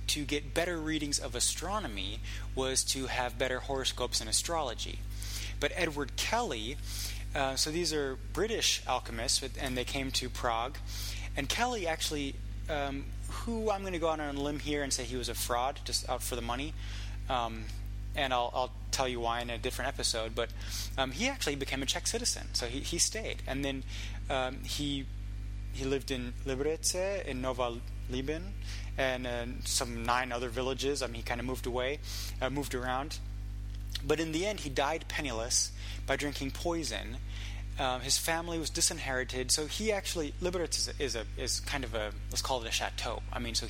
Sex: male